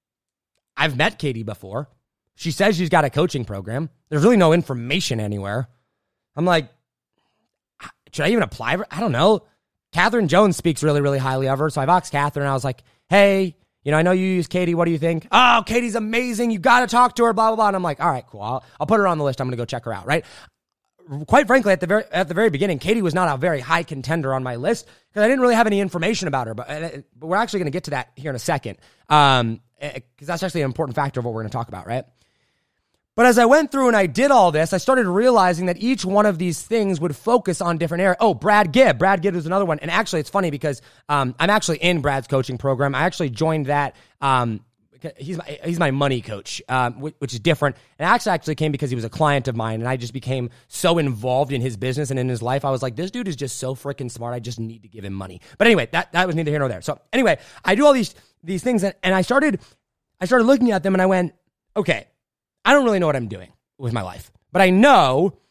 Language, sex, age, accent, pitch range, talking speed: English, male, 20-39, American, 130-195 Hz, 260 wpm